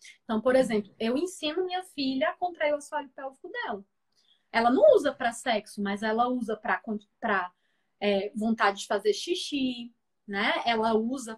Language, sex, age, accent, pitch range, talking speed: Portuguese, female, 20-39, Brazilian, 220-285 Hz, 160 wpm